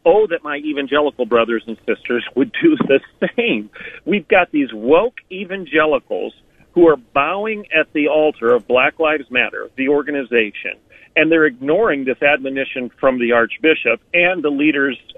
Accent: American